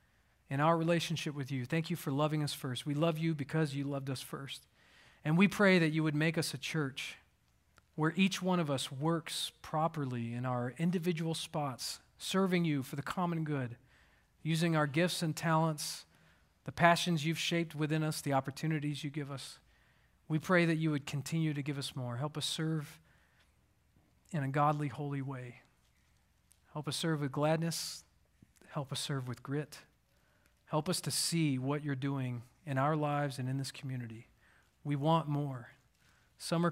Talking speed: 175 wpm